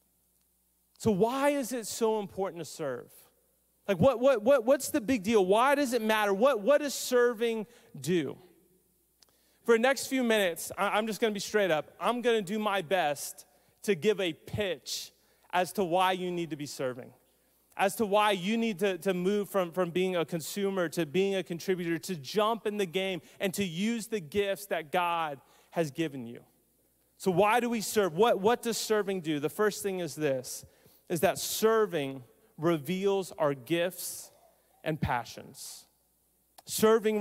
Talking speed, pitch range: 175 wpm, 165-215 Hz